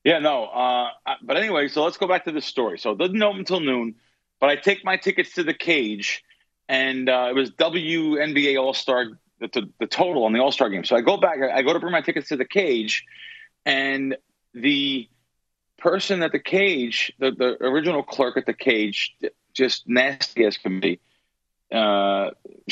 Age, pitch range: 40-59, 125-170 Hz